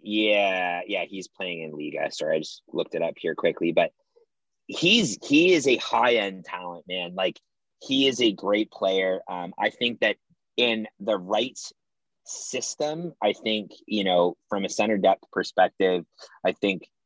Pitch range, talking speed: 95-115 Hz, 170 wpm